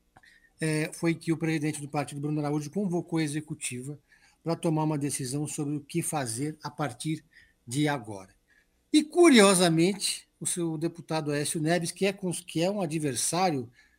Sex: male